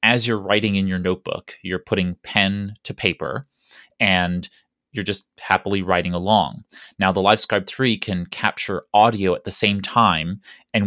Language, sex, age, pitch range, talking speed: English, male, 30-49, 90-110 Hz, 160 wpm